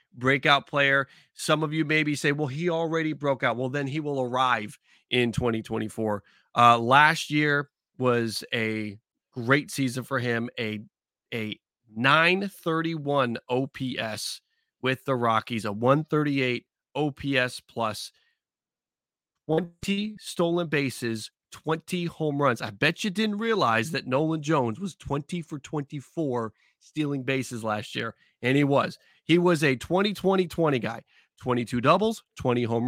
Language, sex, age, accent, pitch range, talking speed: English, male, 30-49, American, 125-170 Hz, 135 wpm